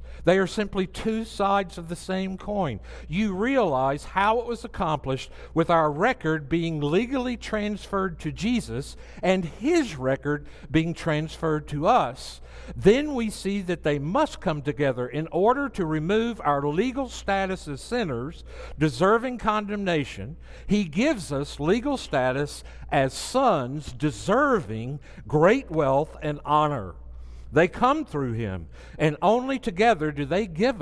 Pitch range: 145-215 Hz